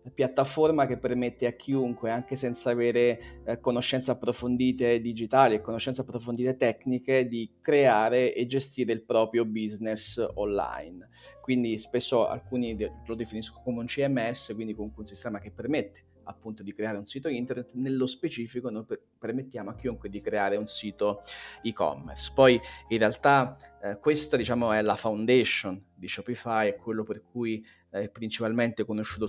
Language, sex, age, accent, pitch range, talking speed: Italian, male, 30-49, native, 105-125 Hz, 155 wpm